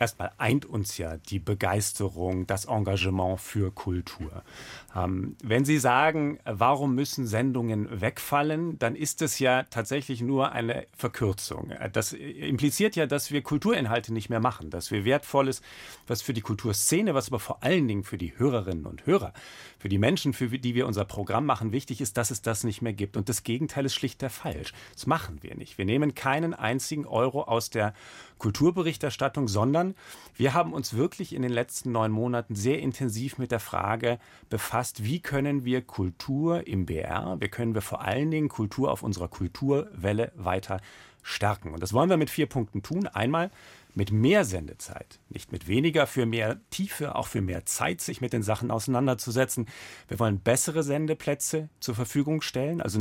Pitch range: 105-140 Hz